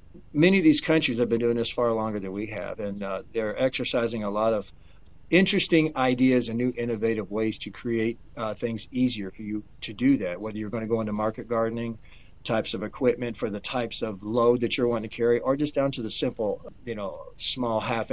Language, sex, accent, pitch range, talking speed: English, male, American, 105-130 Hz, 220 wpm